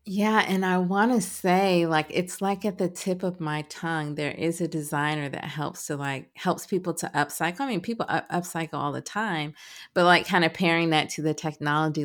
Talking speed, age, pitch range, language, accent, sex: 215 wpm, 30-49, 150-175 Hz, English, American, female